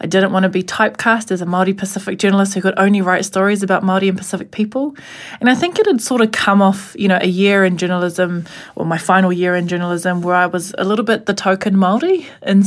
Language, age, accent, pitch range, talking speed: English, 20-39, Australian, 185-215 Hz, 250 wpm